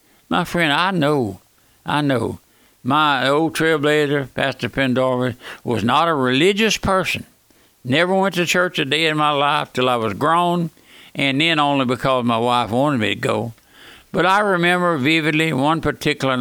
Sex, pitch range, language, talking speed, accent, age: male, 125-175 Hz, English, 165 wpm, American, 60-79